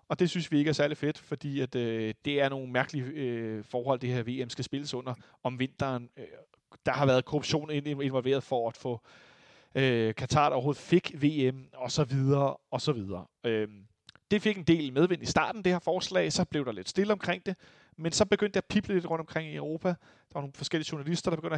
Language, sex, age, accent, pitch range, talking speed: Danish, male, 30-49, native, 130-160 Hz, 210 wpm